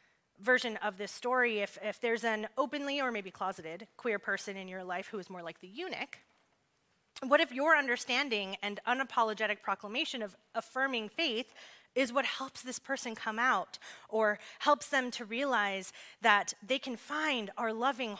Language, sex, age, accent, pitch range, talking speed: English, female, 30-49, American, 200-275 Hz, 170 wpm